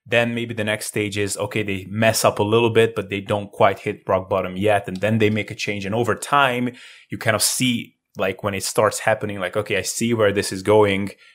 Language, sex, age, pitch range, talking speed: English, male, 20-39, 100-115 Hz, 250 wpm